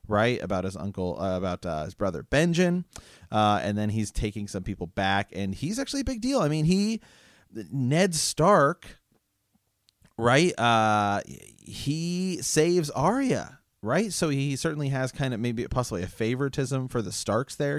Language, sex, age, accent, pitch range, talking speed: English, male, 30-49, American, 95-125 Hz, 165 wpm